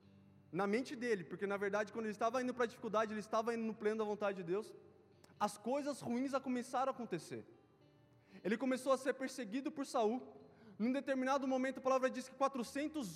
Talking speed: 195 wpm